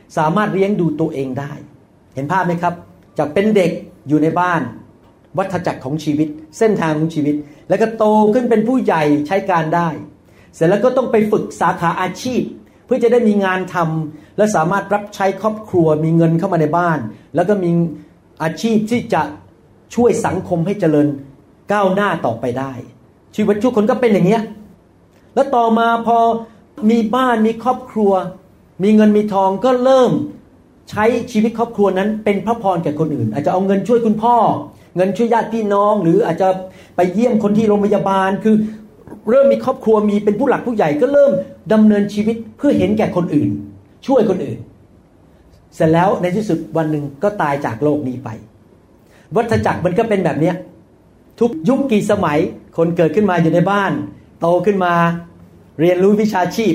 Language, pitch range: Thai, 155-215 Hz